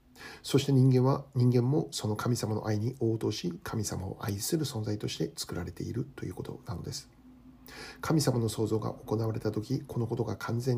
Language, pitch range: Japanese, 105-135 Hz